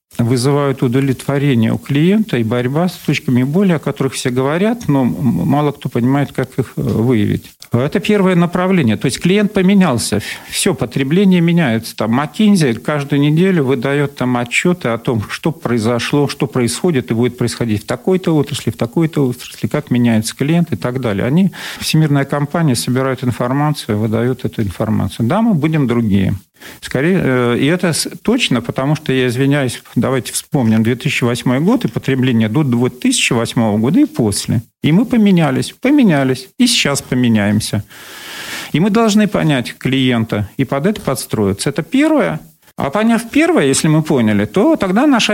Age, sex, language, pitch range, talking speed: 50-69, male, Russian, 120-180 Hz, 150 wpm